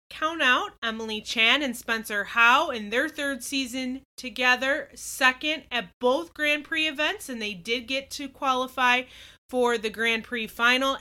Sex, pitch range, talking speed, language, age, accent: female, 215-265 Hz, 160 wpm, English, 20-39, American